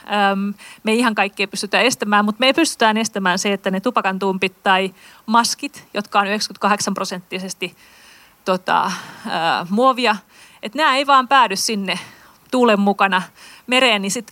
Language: Finnish